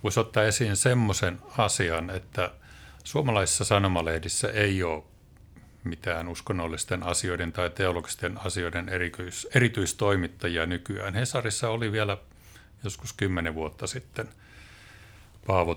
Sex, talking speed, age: male, 100 wpm, 50-69